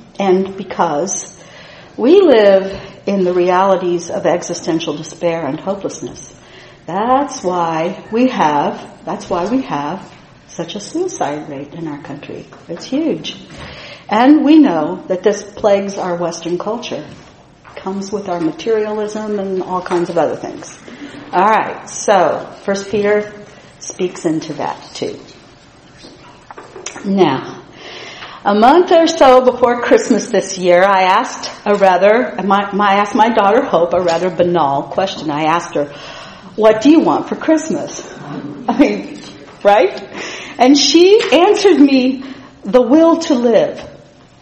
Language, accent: English, American